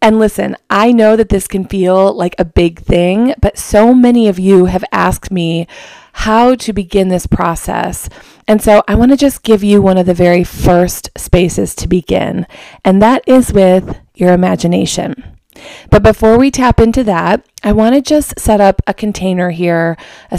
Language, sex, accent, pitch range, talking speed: English, female, American, 180-220 Hz, 185 wpm